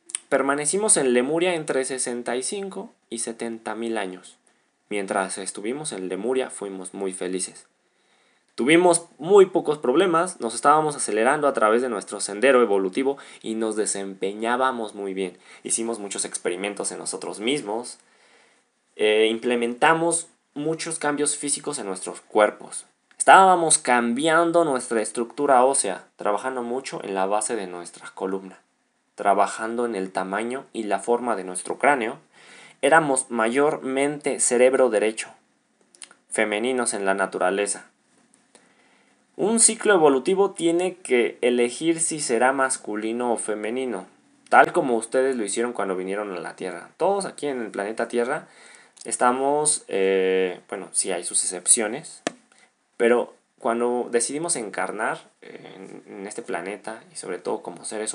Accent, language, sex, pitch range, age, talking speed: Mexican, Spanish, male, 105-150 Hz, 20-39, 130 wpm